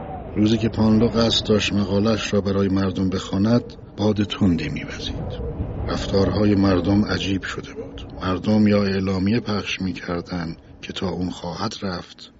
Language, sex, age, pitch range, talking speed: Persian, male, 60-79, 95-110 Hz, 135 wpm